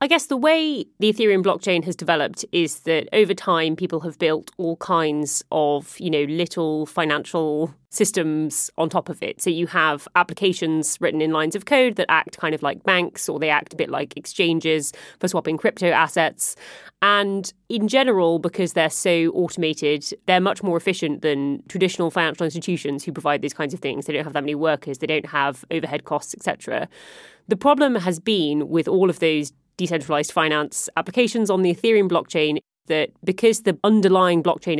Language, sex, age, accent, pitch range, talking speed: English, female, 30-49, British, 155-190 Hz, 185 wpm